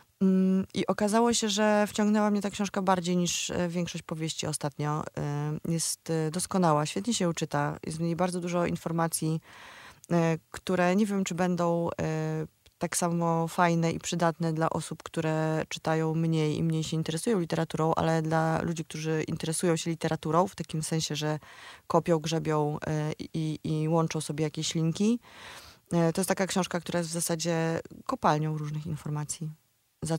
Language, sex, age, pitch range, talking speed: Polish, female, 20-39, 155-180 Hz, 150 wpm